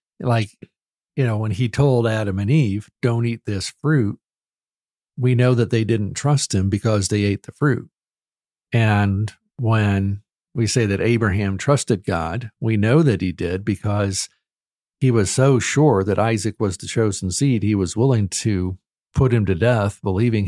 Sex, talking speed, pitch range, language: male, 170 wpm, 100-120 Hz, English